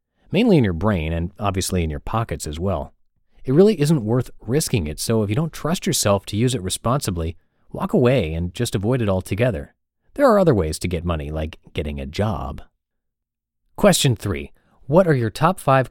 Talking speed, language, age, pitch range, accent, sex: 195 wpm, English, 30-49, 90-130 Hz, American, male